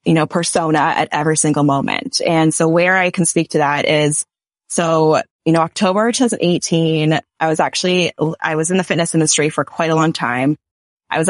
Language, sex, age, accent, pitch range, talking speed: English, female, 20-39, American, 155-180 Hz, 195 wpm